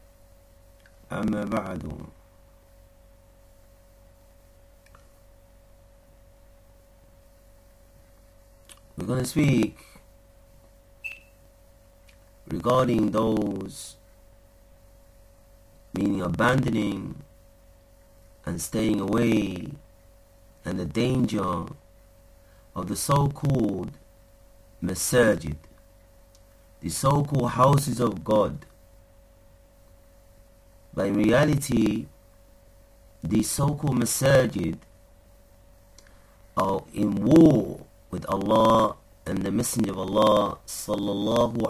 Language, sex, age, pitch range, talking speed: English, male, 50-69, 95-105 Hz, 60 wpm